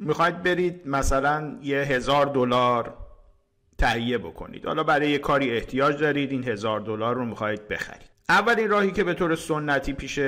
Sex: male